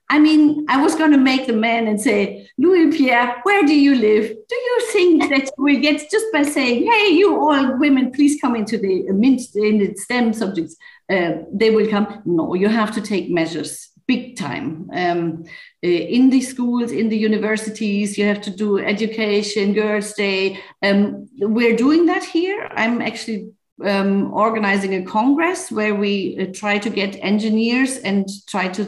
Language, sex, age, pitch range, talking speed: English, female, 50-69, 195-265 Hz, 170 wpm